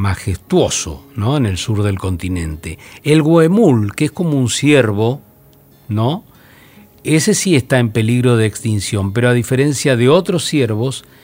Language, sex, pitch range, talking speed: Spanish, male, 100-130 Hz, 140 wpm